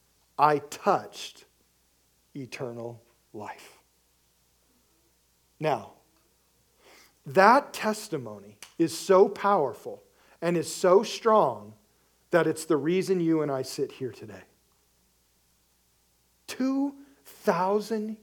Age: 50-69